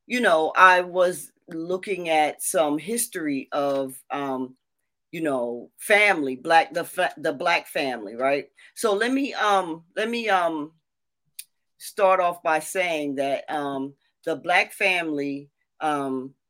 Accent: American